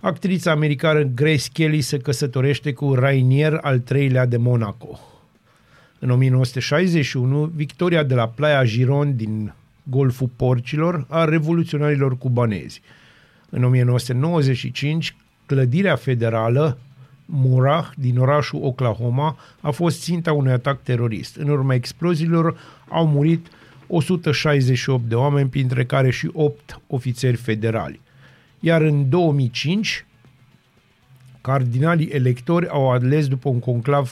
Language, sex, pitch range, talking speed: Romanian, male, 125-150 Hz, 110 wpm